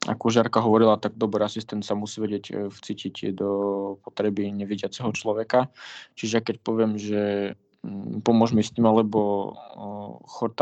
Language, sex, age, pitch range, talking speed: Slovak, male, 20-39, 105-115 Hz, 130 wpm